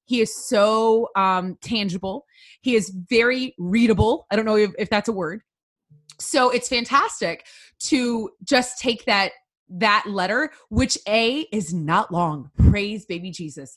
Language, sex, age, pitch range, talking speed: English, female, 20-39, 190-255 Hz, 150 wpm